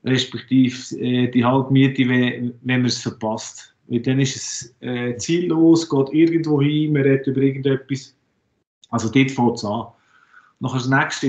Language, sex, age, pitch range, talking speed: German, male, 50-69, 120-145 Hz, 145 wpm